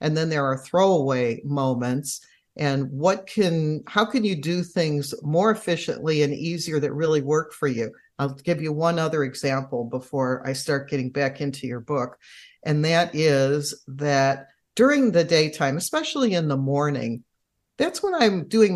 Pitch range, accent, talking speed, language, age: 140-180 Hz, American, 165 wpm, English, 50-69